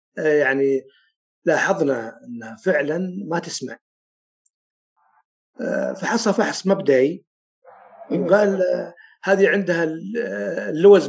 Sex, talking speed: male, 75 wpm